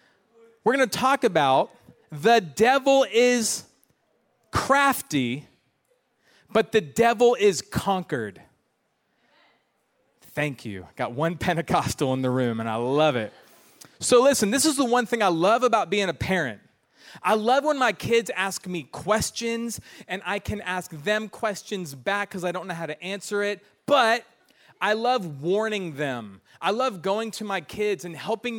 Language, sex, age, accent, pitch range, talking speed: English, male, 30-49, American, 165-220 Hz, 155 wpm